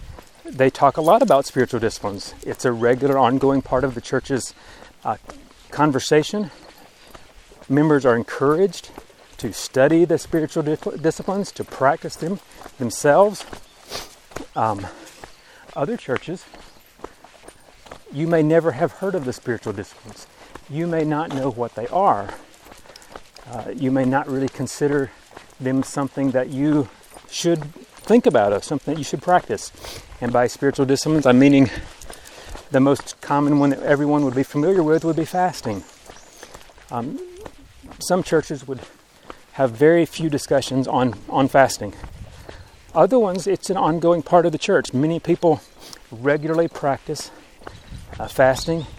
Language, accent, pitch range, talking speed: English, American, 125-155 Hz, 140 wpm